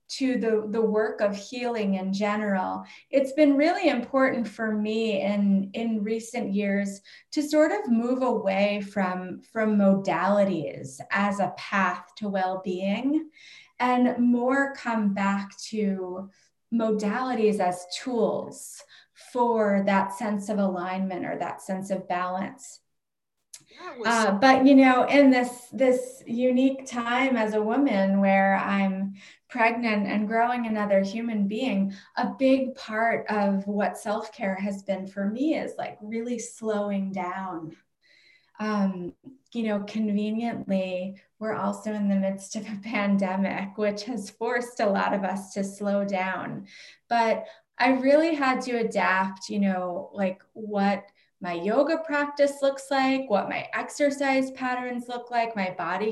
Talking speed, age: 140 wpm, 20-39